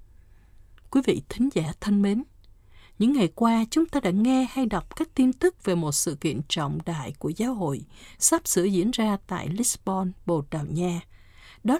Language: Vietnamese